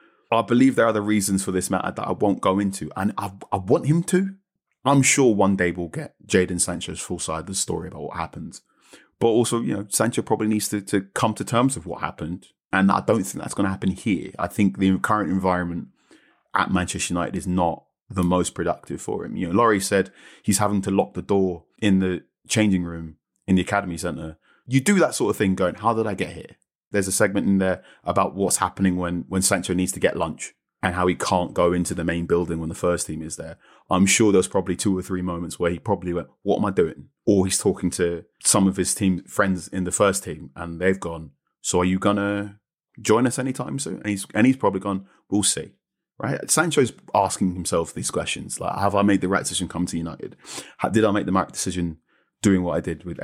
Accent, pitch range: British, 90-100 Hz